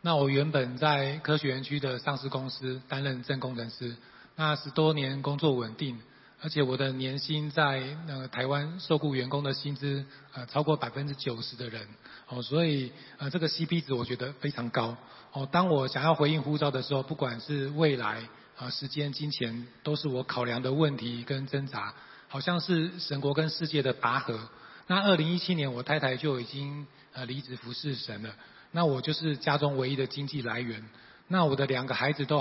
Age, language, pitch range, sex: 20-39, Chinese, 130-150 Hz, male